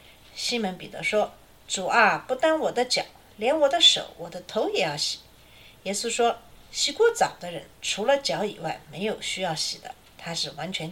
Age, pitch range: 50-69, 190-270 Hz